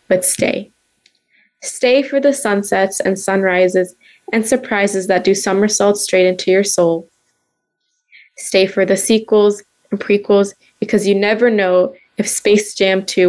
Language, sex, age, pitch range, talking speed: English, female, 20-39, 180-210 Hz, 140 wpm